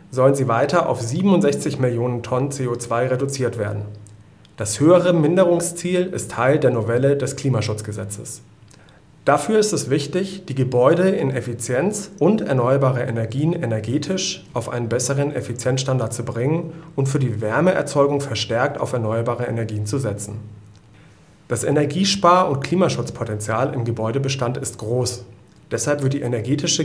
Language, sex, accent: German, male, German